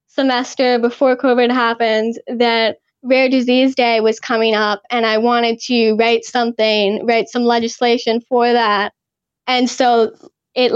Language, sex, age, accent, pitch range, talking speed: English, female, 10-29, American, 230-270 Hz, 140 wpm